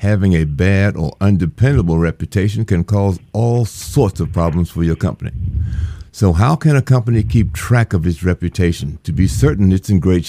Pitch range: 85-105 Hz